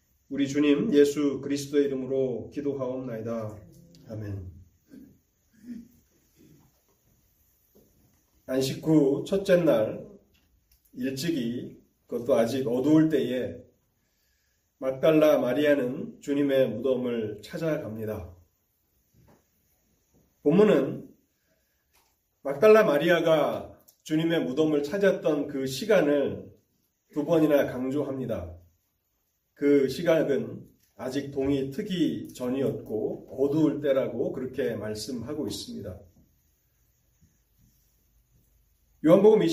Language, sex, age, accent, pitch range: Korean, male, 30-49, native, 110-150 Hz